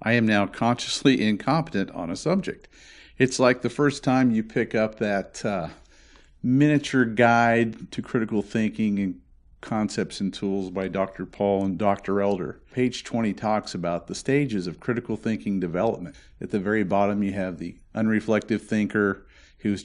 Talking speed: 160 wpm